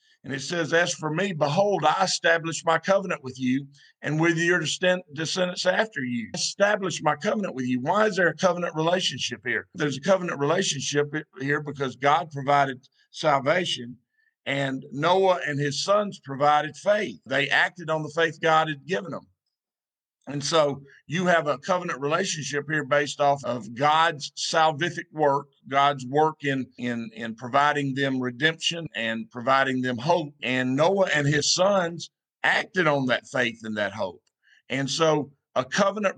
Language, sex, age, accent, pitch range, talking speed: English, male, 50-69, American, 140-175 Hz, 165 wpm